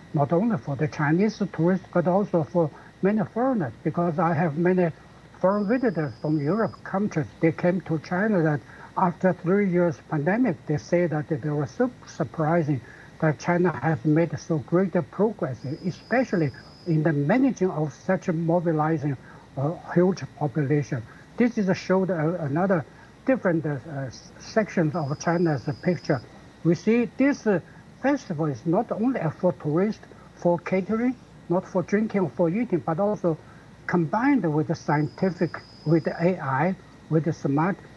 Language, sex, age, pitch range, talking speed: English, male, 60-79, 155-190 Hz, 150 wpm